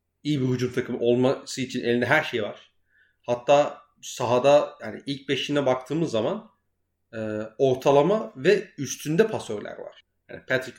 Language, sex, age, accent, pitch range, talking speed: Turkish, male, 40-59, native, 120-170 Hz, 130 wpm